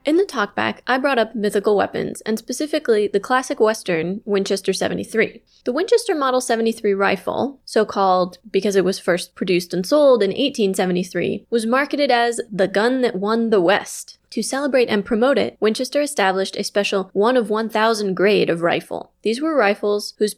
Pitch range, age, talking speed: 195-255 Hz, 20-39, 165 wpm